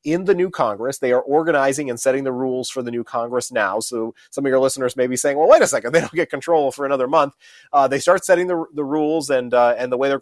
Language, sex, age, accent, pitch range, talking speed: English, male, 30-49, American, 120-155 Hz, 280 wpm